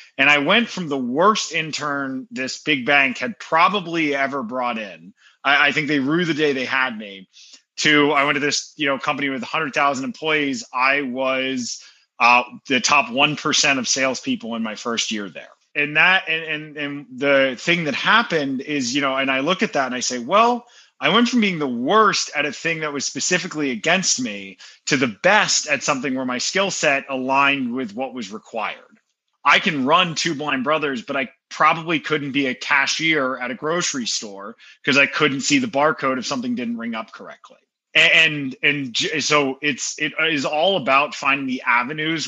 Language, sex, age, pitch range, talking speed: English, male, 30-49, 130-165 Hz, 200 wpm